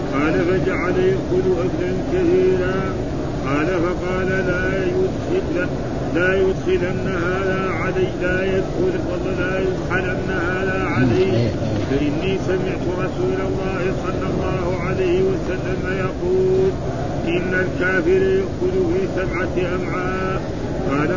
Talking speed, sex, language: 100 wpm, male, Arabic